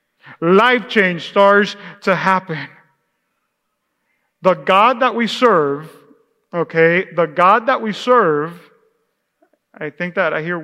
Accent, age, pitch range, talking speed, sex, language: American, 40-59, 165-210 Hz, 120 wpm, male, English